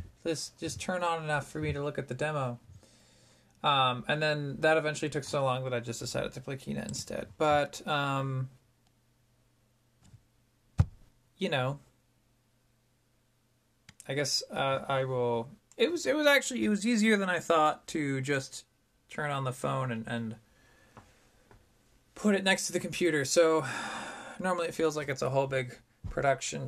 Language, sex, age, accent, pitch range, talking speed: English, male, 20-39, American, 120-150 Hz, 160 wpm